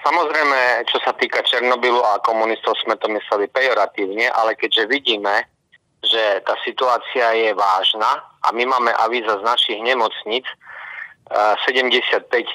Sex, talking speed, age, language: male, 130 wpm, 30-49, Slovak